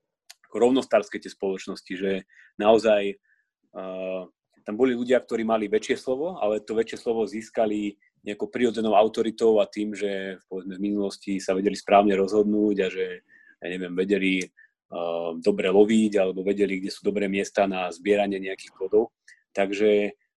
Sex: male